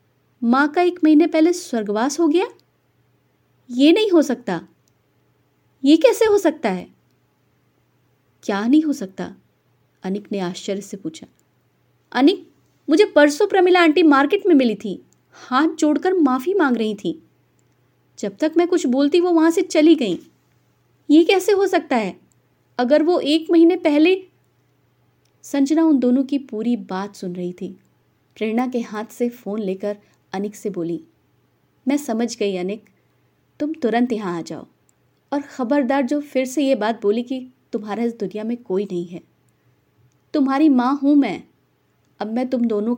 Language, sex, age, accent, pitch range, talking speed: Hindi, female, 20-39, native, 205-300 Hz, 155 wpm